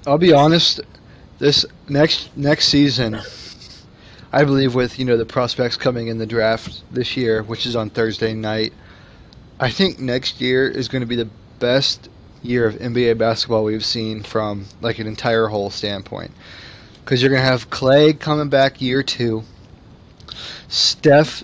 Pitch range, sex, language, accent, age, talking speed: 115-130 Hz, male, English, American, 20-39, 160 wpm